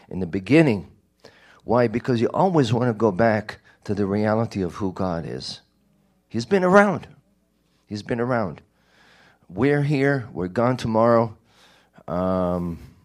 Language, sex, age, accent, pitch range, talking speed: English, male, 50-69, American, 90-120 Hz, 140 wpm